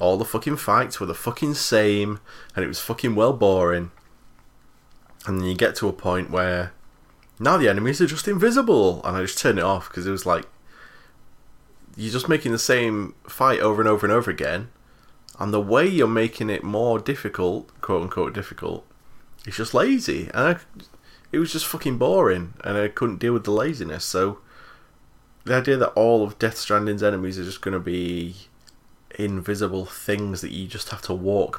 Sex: male